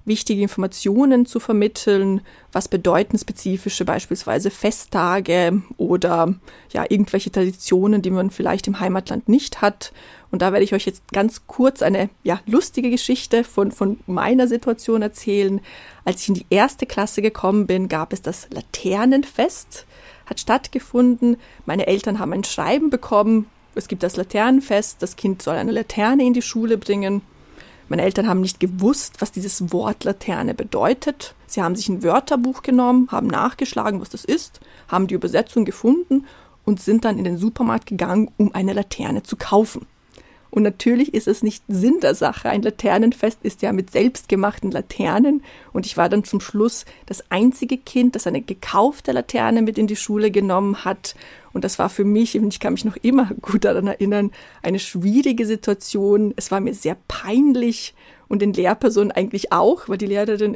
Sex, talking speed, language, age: female, 165 wpm, German, 30-49